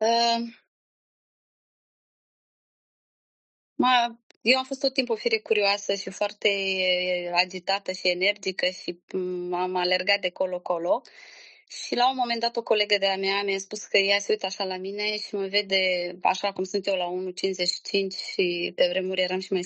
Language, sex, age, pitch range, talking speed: Romanian, female, 20-39, 190-235 Hz, 160 wpm